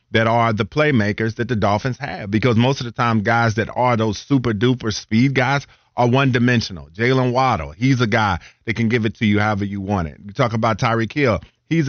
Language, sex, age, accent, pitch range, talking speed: English, male, 40-59, American, 105-125 Hz, 215 wpm